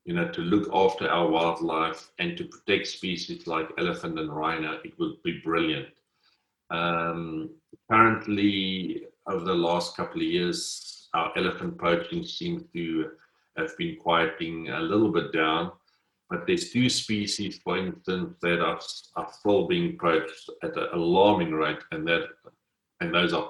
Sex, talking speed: male, 155 wpm